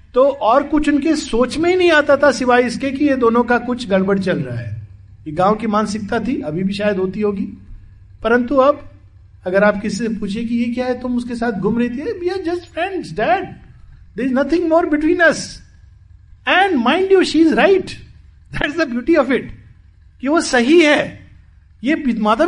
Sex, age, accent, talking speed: male, 50-69, native, 195 wpm